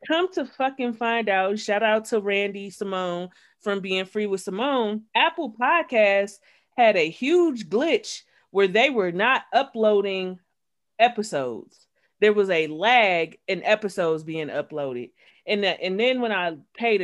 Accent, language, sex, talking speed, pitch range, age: American, English, female, 150 wpm, 195-250 Hz, 30-49